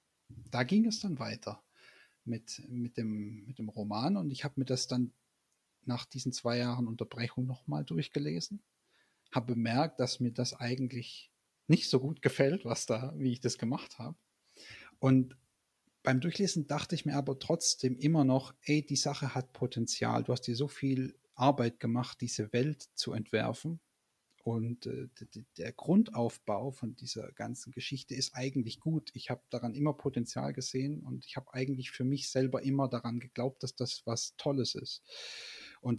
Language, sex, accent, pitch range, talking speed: German, male, German, 120-140 Hz, 160 wpm